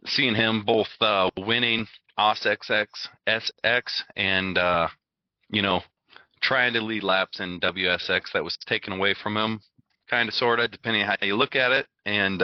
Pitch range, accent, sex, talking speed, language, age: 90-115 Hz, American, male, 170 wpm, English, 30-49